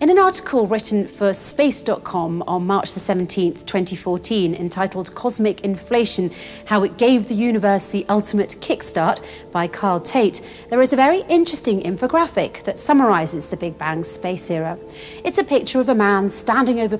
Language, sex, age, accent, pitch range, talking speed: English, female, 40-59, British, 180-240 Hz, 160 wpm